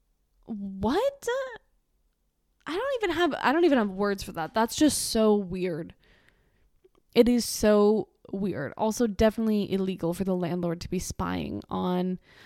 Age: 20-39